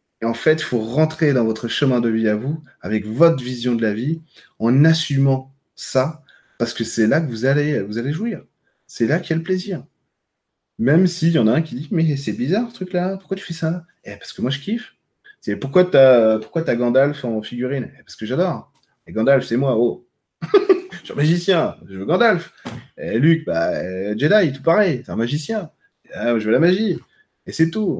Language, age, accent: French, 20-39, French